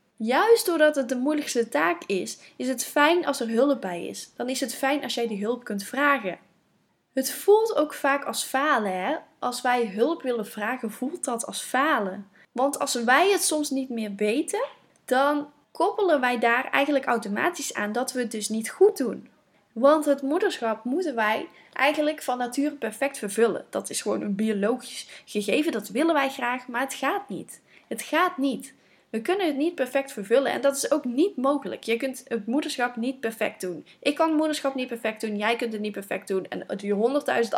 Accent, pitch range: Dutch, 230-300 Hz